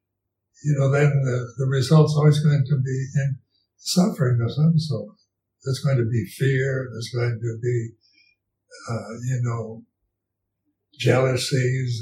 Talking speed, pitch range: 140 wpm, 120-145 Hz